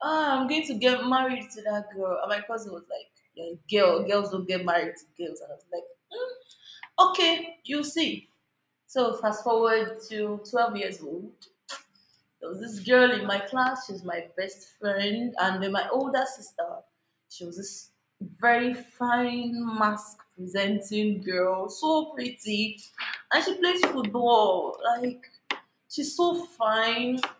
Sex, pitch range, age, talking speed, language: female, 195-255 Hz, 20-39, 155 wpm, English